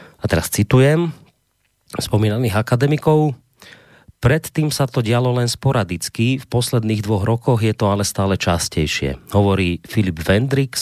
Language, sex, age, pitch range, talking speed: Slovak, male, 30-49, 95-125 Hz, 130 wpm